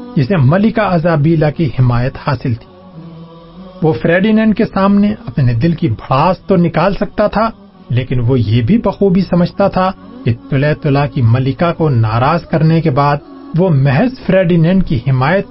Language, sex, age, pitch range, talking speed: Urdu, male, 40-59, 140-195 Hz, 160 wpm